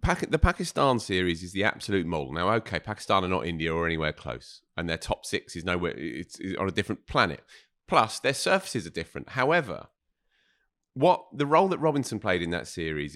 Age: 30-49